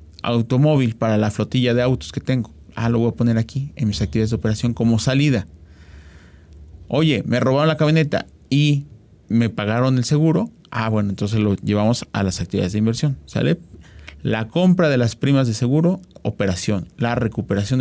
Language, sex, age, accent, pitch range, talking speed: Spanish, male, 40-59, Mexican, 105-145 Hz, 175 wpm